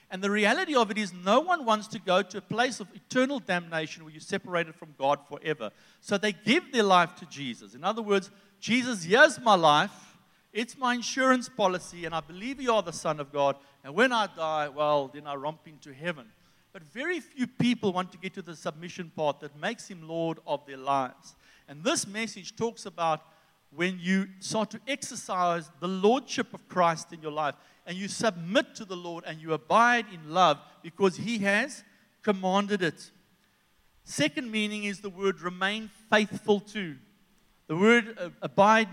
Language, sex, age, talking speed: English, male, 60-79, 190 wpm